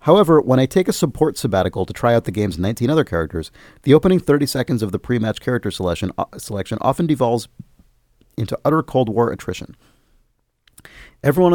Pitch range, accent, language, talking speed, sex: 100-135 Hz, American, English, 165 wpm, male